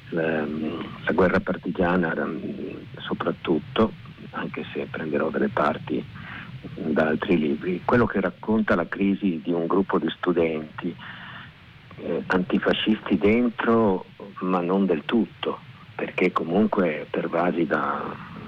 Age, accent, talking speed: 50-69, native, 105 wpm